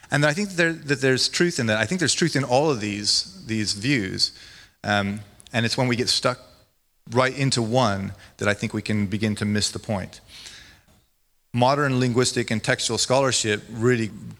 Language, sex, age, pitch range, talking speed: English, male, 30-49, 105-120 Hz, 190 wpm